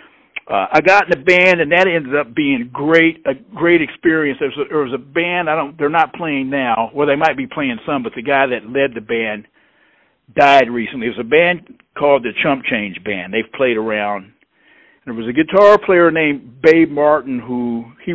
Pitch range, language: 120-170 Hz, English